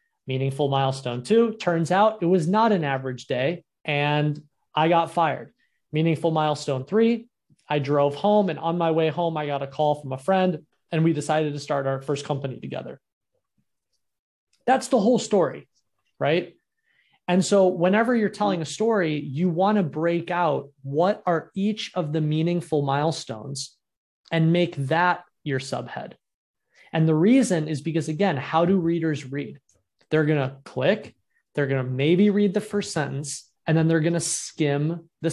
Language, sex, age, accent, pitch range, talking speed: English, male, 30-49, American, 145-180 Hz, 170 wpm